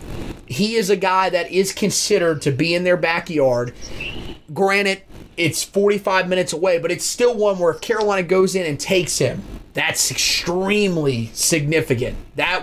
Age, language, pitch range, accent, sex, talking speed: 30-49, English, 150-195 Hz, American, male, 150 wpm